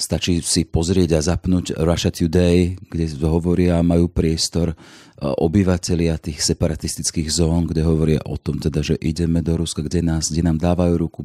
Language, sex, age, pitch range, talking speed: Slovak, male, 30-49, 85-95 Hz, 160 wpm